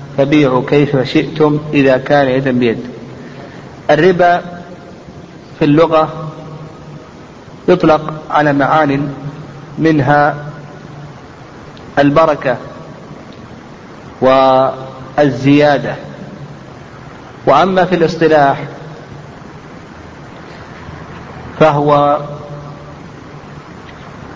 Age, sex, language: 50-69, male, Arabic